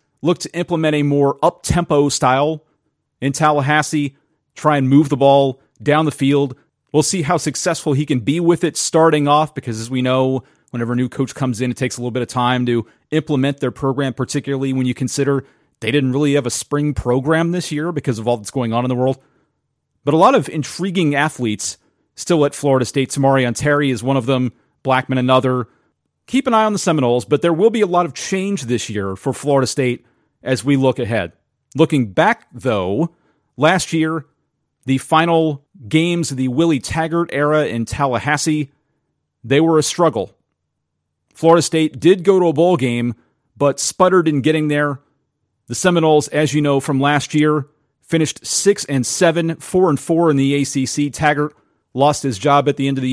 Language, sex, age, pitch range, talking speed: English, male, 30-49, 130-155 Hz, 195 wpm